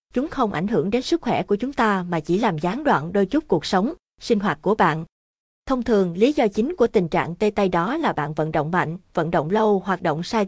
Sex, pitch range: female, 175-225 Hz